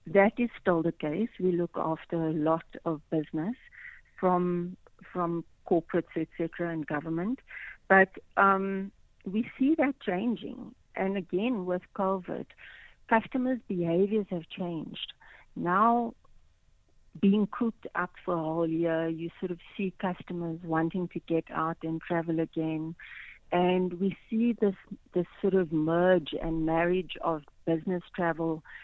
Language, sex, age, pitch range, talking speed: English, female, 60-79, 165-190 Hz, 135 wpm